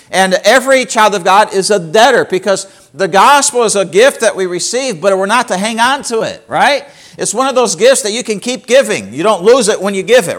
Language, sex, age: English, male, 50-69